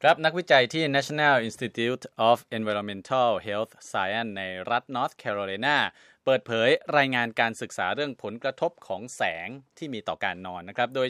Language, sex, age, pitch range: Thai, male, 20-39, 105-140 Hz